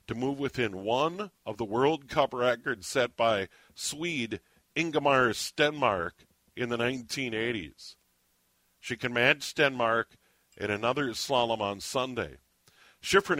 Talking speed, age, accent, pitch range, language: 120 wpm, 50-69, American, 90-130 Hz, English